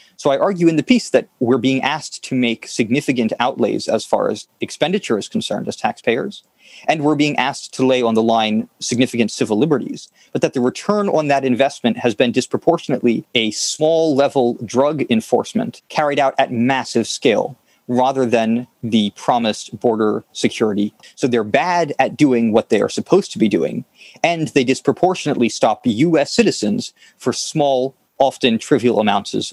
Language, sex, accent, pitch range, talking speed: English, male, American, 120-155 Hz, 165 wpm